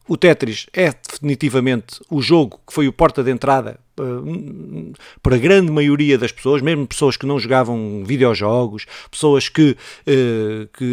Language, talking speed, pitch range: Portuguese, 150 wpm, 120-145 Hz